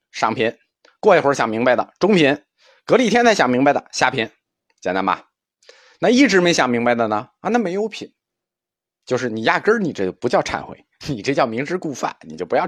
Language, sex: Chinese, male